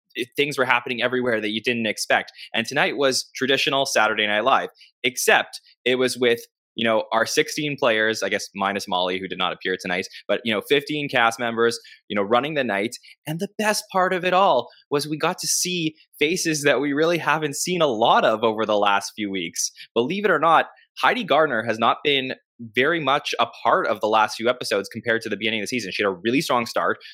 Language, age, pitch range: English, 20-39, 110-155 Hz